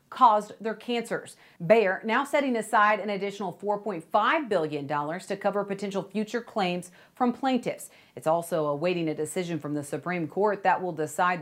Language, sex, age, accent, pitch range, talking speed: English, female, 40-59, American, 170-235 Hz, 165 wpm